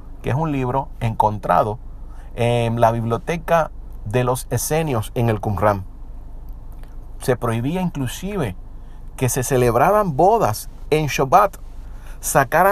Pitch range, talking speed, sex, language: 110-145 Hz, 115 wpm, male, Spanish